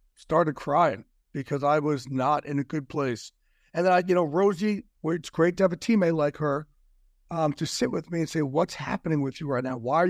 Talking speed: 230 wpm